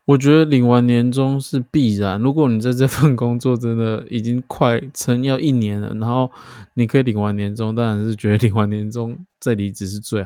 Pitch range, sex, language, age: 110-130 Hz, male, Chinese, 20-39